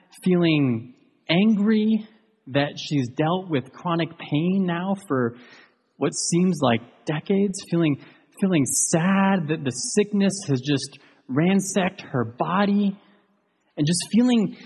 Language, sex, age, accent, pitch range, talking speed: English, male, 30-49, American, 155-225 Hz, 115 wpm